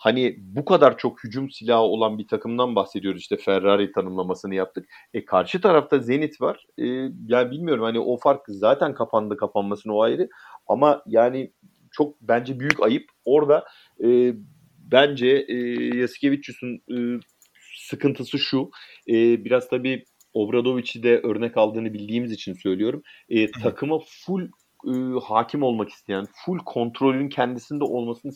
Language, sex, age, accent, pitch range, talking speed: Turkish, male, 40-59, native, 110-145 Hz, 140 wpm